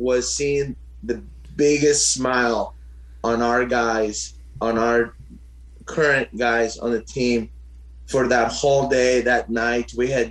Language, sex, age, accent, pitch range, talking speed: English, male, 30-49, American, 110-130 Hz, 135 wpm